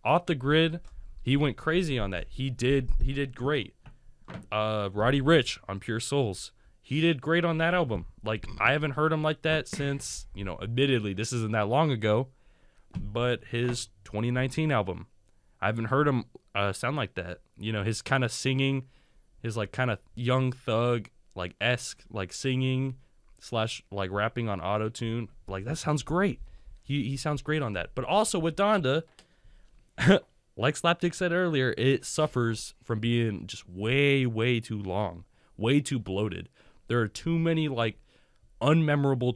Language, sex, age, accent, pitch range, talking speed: English, male, 20-39, American, 100-135 Hz, 170 wpm